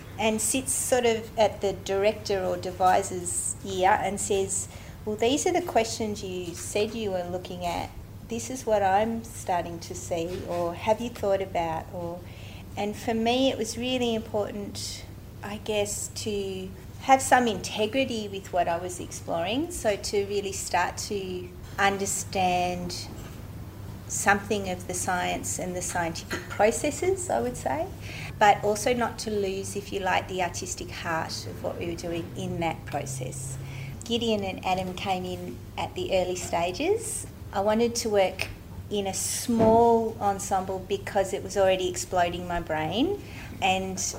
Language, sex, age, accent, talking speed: English, female, 40-59, Australian, 155 wpm